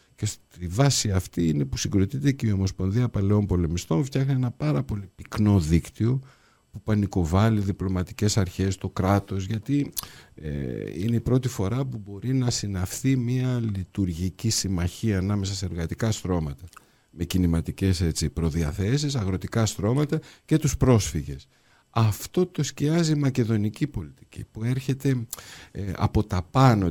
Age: 60-79